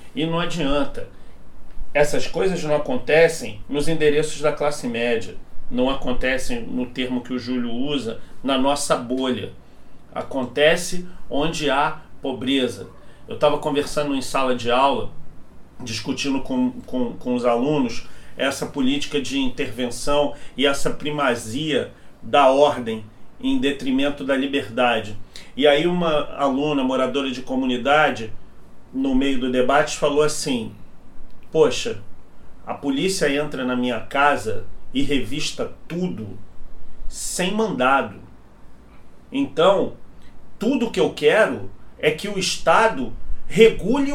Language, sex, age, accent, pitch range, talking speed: Portuguese, male, 40-59, Brazilian, 130-210 Hz, 120 wpm